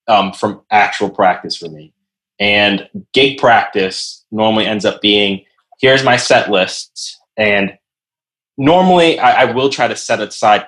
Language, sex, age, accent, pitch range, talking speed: English, male, 20-39, American, 105-135 Hz, 145 wpm